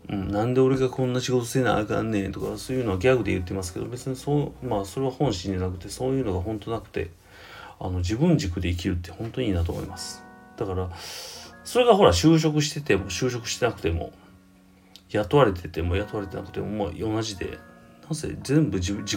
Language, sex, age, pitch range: Japanese, male, 40-59, 95-130 Hz